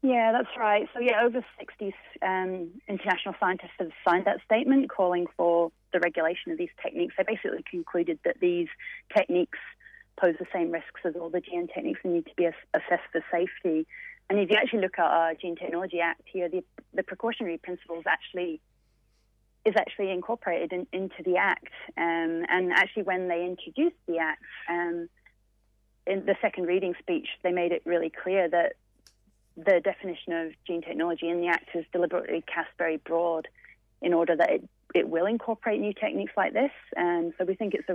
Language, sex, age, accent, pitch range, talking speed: English, female, 30-49, British, 170-205 Hz, 180 wpm